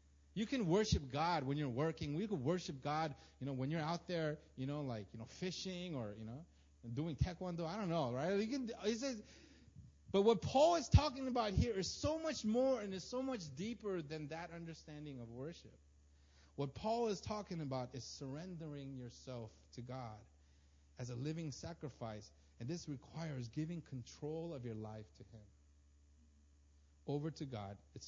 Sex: male